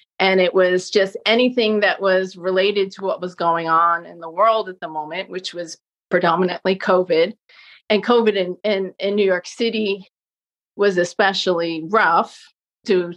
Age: 30-49